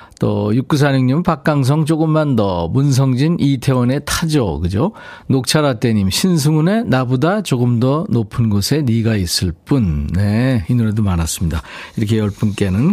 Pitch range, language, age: 105-155 Hz, Korean, 50-69